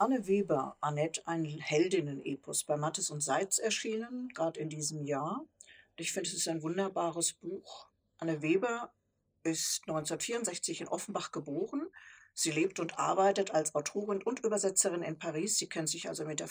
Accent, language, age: German, German, 50-69